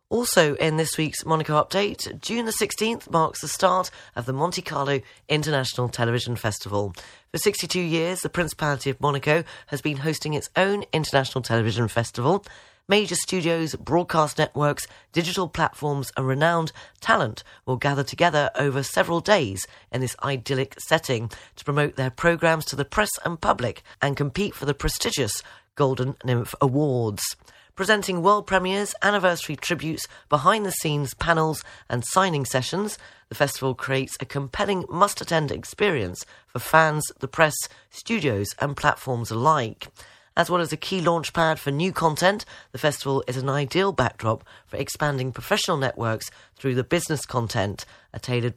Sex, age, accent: female, 40-59, British